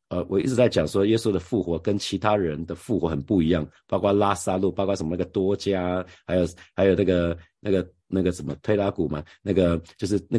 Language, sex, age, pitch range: Chinese, male, 50-69, 85-105 Hz